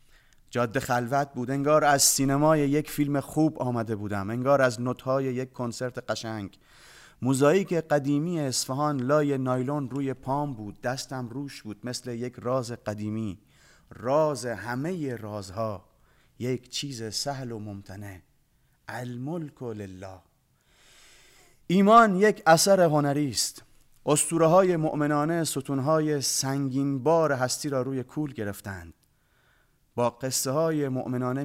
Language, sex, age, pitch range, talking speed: Persian, male, 30-49, 110-140 Hz, 120 wpm